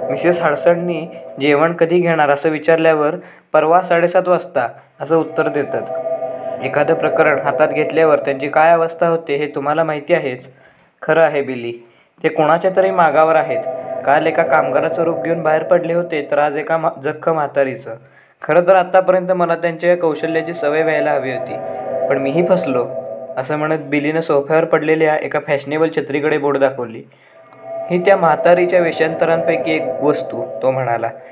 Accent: native